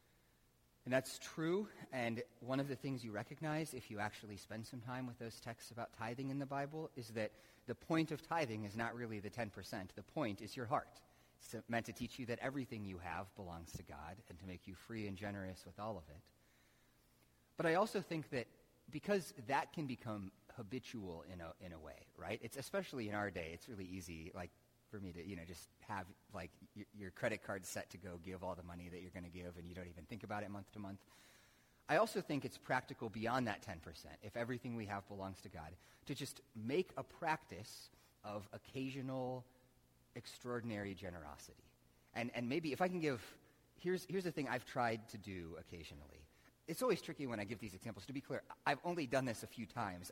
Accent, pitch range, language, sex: American, 90-130 Hz, English, male